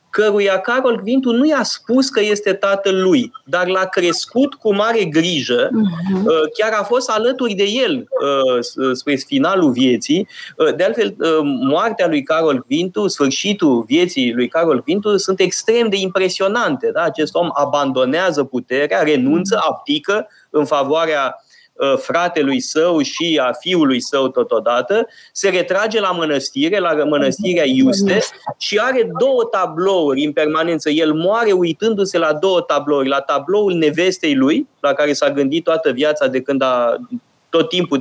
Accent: native